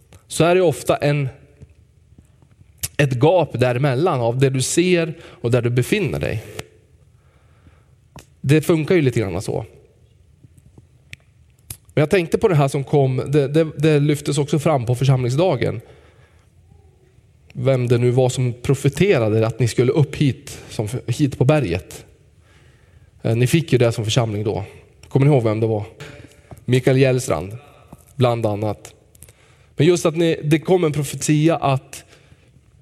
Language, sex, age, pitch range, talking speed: Swedish, male, 20-39, 115-150 Hz, 145 wpm